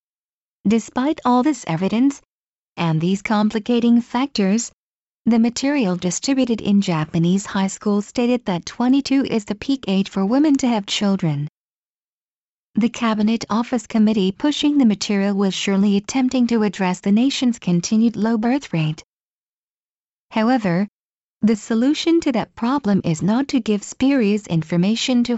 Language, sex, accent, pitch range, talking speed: English, female, American, 195-245 Hz, 135 wpm